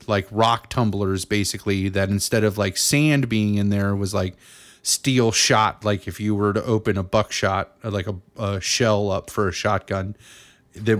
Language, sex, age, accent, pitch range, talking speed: English, male, 30-49, American, 105-120 Hz, 180 wpm